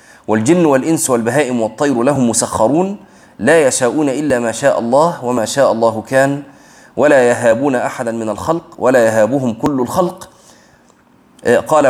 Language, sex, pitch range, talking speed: Arabic, male, 120-165 Hz, 130 wpm